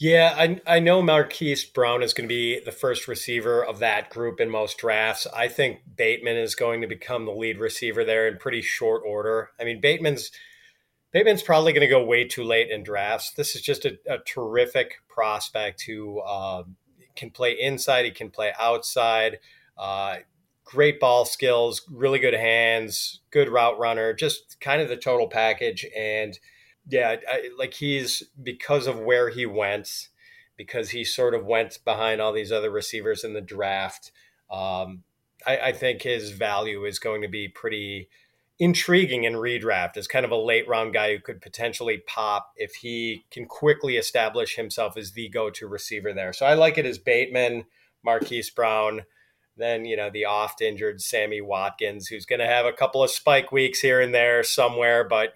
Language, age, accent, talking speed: English, 30-49, American, 185 wpm